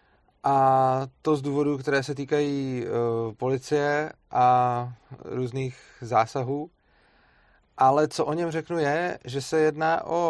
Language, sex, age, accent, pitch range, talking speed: Czech, male, 30-49, native, 125-145 Hz, 130 wpm